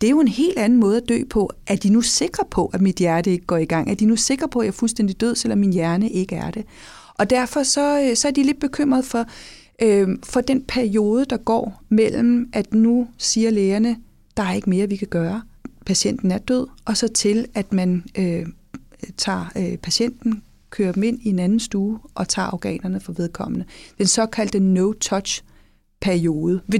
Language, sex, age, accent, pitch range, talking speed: English, female, 40-59, Danish, 190-240 Hz, 210 wpm